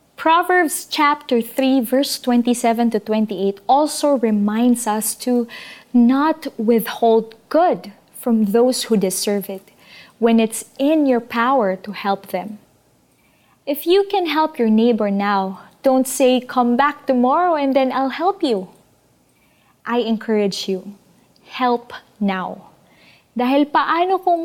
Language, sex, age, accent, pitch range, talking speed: Filipino, female, 20-39, native, 220-270 Hz, 130 wpm